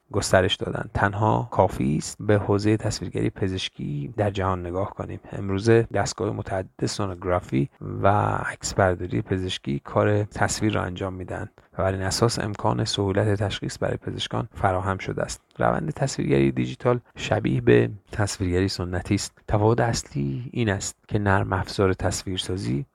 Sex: male